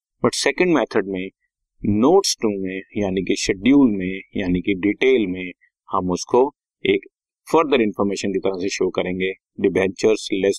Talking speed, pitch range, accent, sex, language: 140 wpm, 100-155 Hz, native, male, Hindi